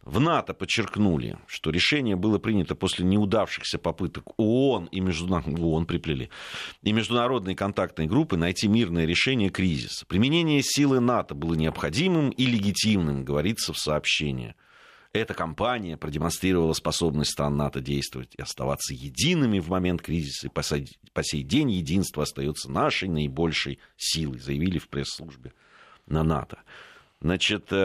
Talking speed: 125 wpm